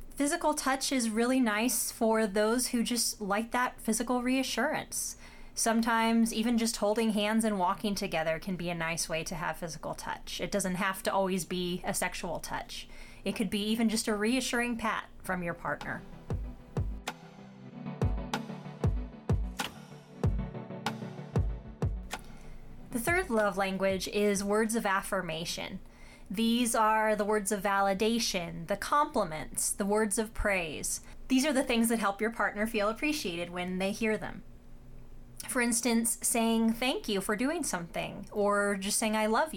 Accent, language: American, English